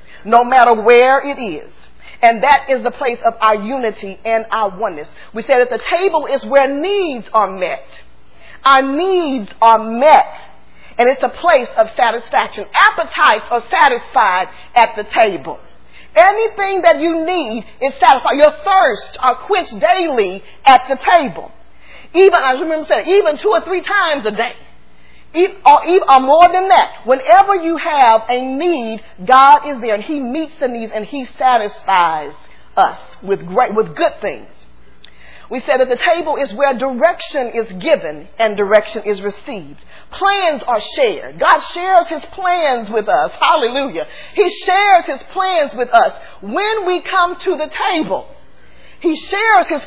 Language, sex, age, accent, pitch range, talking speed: English, female, 40-59, American, 230-350 Hz, 160 wpm